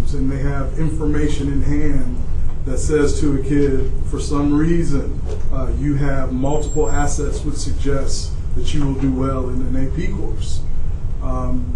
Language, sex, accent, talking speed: English, male, American, 160 wpm